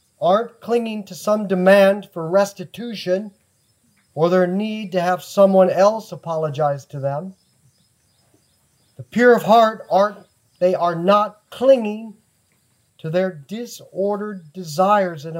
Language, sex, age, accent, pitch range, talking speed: English, male, 50-69, American, 145-225 Hz, 120 wpm